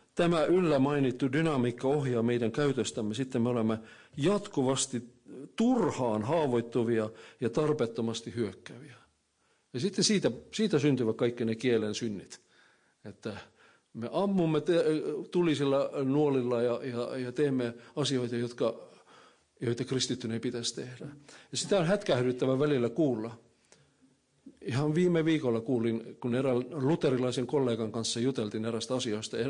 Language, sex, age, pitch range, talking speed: Finnish, male, 50-69, 115-140 Hz, 120 wpm